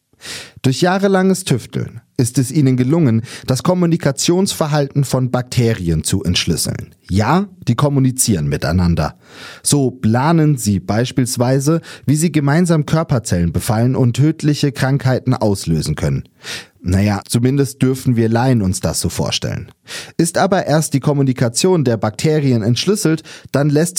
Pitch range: 115-155 Hz